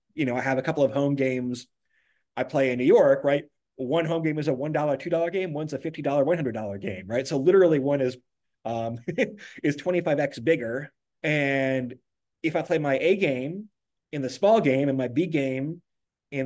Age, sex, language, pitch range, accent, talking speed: 30-49, male, English, 130-160 Hz, American, 210 wpm